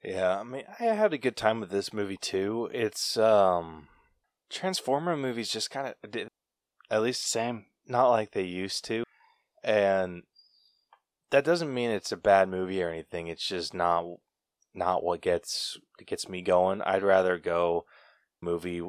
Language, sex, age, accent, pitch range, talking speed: English, male, 20-39, American, 90-115 Hz, 160 wpm